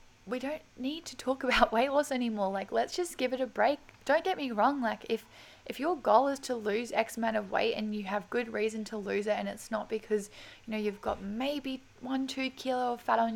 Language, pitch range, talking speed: English, 205-255 Hz, 245 wpm